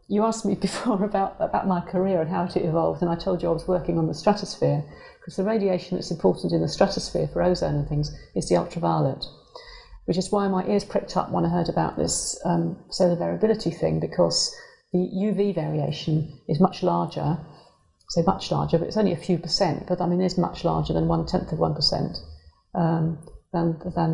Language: English